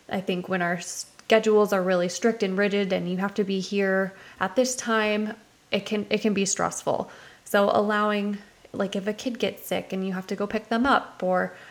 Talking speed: 215 wpm